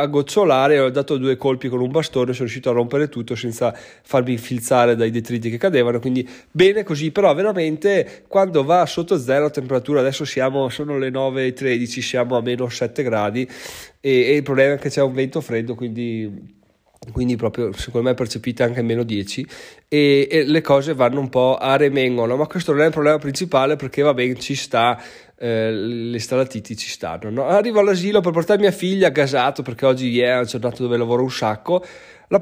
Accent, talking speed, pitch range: native, 195 wpm, 125-155 Hz